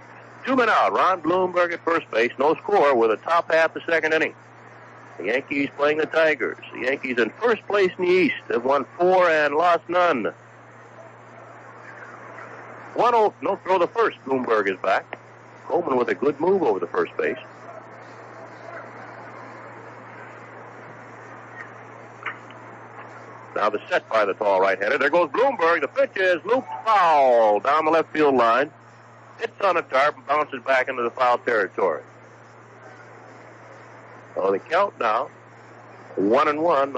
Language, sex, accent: English, male, American